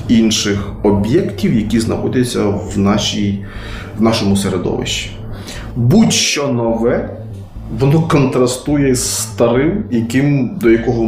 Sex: male